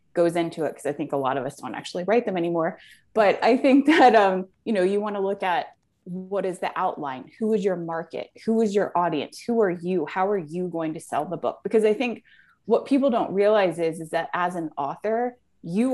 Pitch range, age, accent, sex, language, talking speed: 165-210 Hz, 20-39, American, female, English, 240 wpm